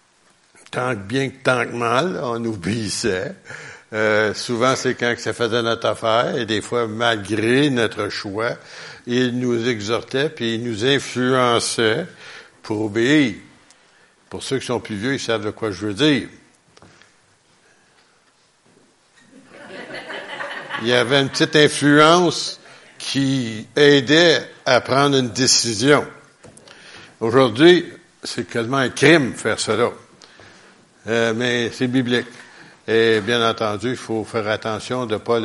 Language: French